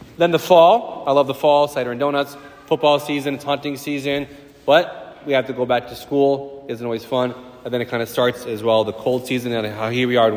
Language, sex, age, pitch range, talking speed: English, male, 30-49, 120-150 Hz, 255 wpm